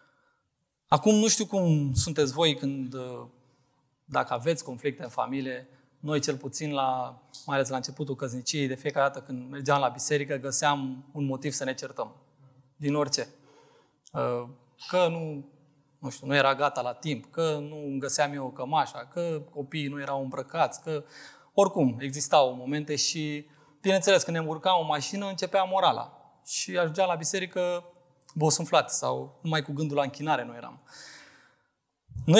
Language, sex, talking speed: Romanian, male, 155 wpm